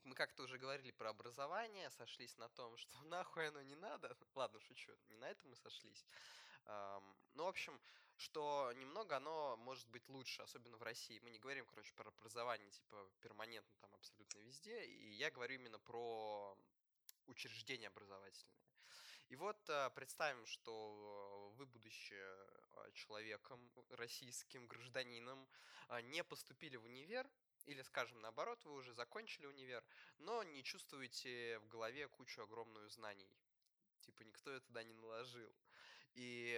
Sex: male